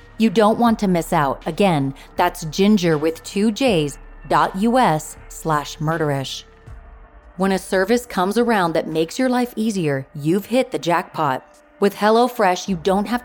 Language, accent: English, American